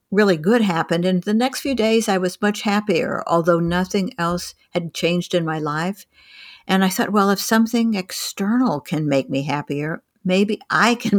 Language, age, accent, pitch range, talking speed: English, 60-79, American, 160-200 Hz, 180 wpm